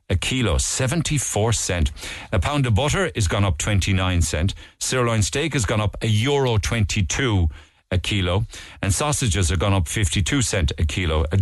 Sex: male